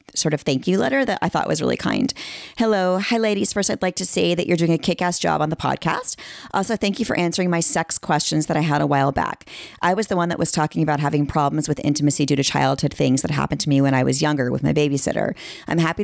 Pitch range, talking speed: 145-185 Hz, 265 wpm